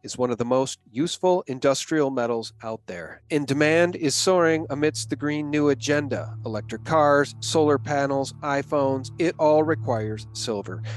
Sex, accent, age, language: male, American, 40-59, English